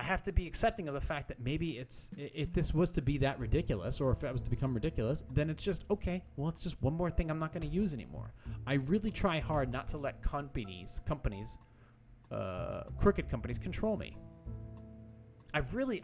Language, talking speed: English, 215 wpm